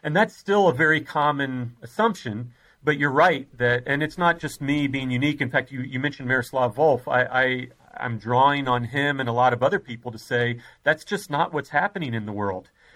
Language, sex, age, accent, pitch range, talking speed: English, male, 40-59, American, 130-160 Hz, 220 wpm